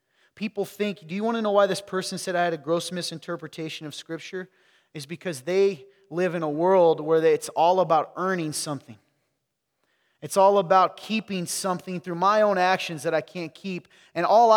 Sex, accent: male, American